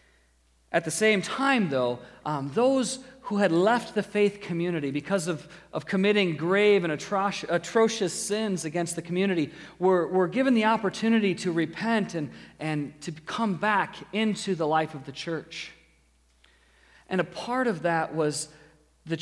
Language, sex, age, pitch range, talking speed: English, male, 40-59, 145-185 Hz, 155 wpm